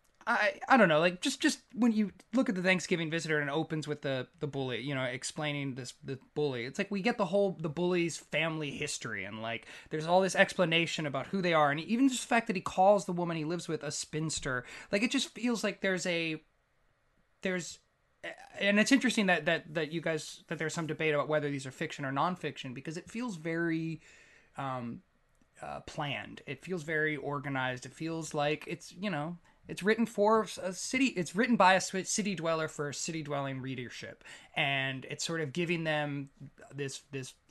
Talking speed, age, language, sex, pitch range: 210 wpm, 20-39, English, male, 140-185 Hz